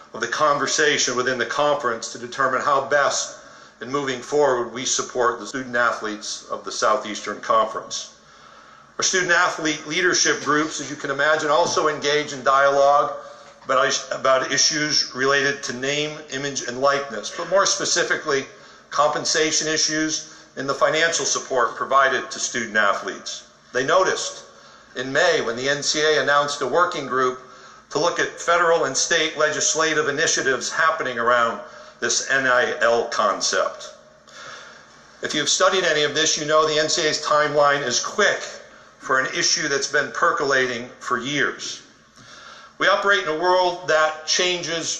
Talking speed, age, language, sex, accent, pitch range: 145 wpm, 60-79, English, male, American, 140-155 Hz